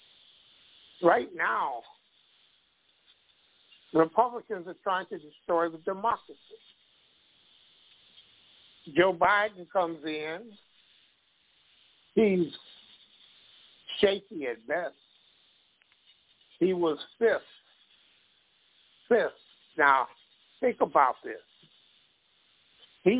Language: English